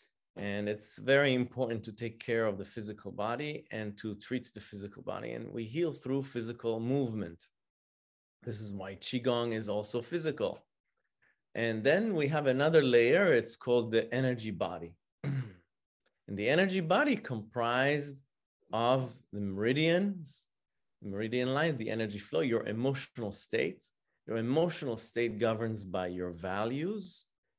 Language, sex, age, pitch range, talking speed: English, male, 30-49, 105-135 Hz, 140 wpm